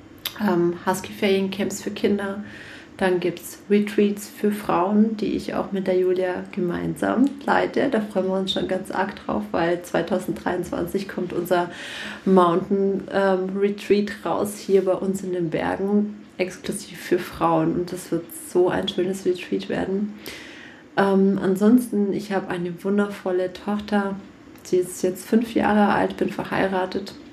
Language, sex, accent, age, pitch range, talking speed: German, female, German, 30-49, 180-215 Hz, 145 wpm